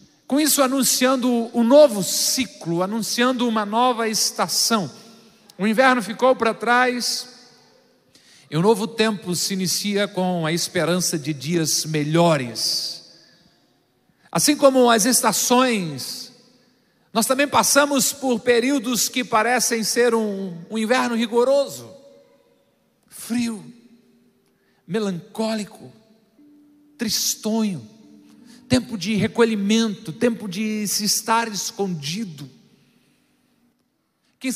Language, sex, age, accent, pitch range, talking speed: Portuguese, male, 50-69, Brazilian, 210-255 Hz, 95 wpm